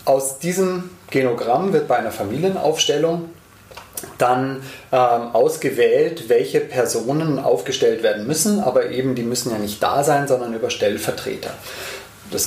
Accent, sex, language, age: German, male, German, 30-49